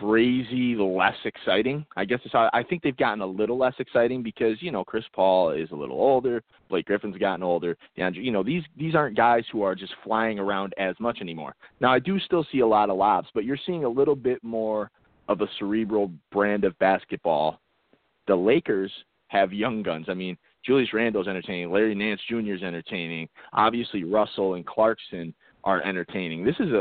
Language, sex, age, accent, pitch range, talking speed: English, male, 30-49, American, 95-115 Hz, 195 wpm